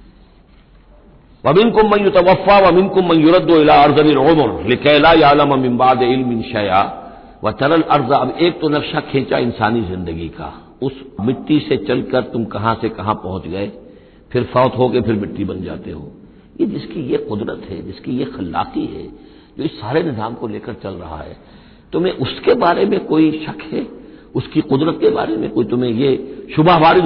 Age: 60-79